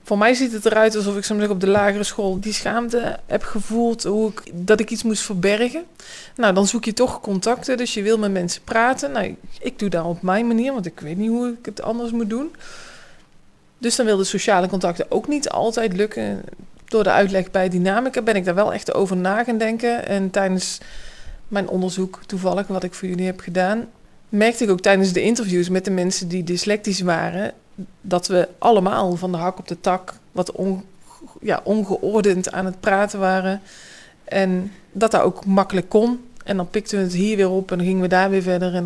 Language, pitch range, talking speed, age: Dutch, 185-220 Hz, 210 wpm, 20-39